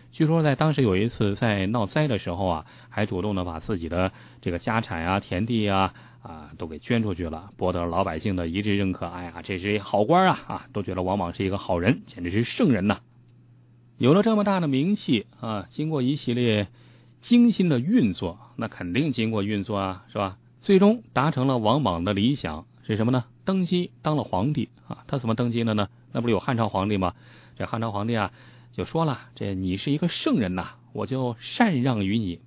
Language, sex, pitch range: Chinese, male, 95-125 Hz